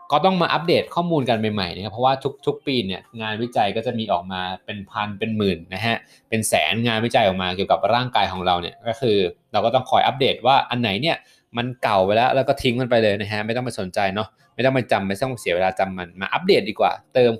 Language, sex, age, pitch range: Thai, male, 20-39, 105-135 Hz